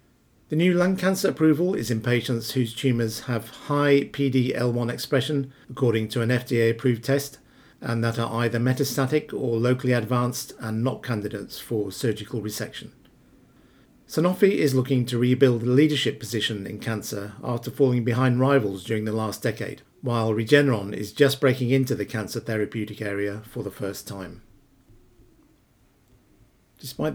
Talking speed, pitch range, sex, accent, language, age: 145 wpm, 115-135 Hz, male, British, English, 50-69